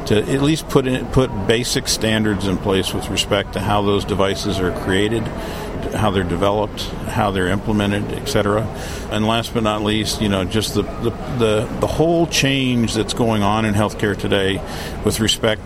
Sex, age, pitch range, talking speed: male, 50-69, 100-115 Hz, 180 wpm